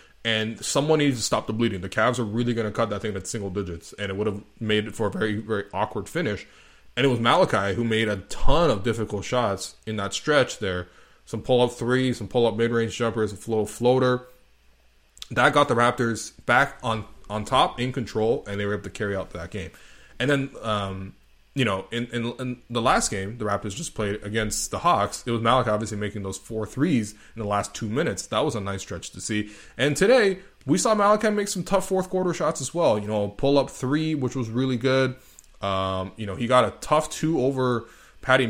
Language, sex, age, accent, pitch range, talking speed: English, male, 20-39, American, 105-130 Hz, 225 wpm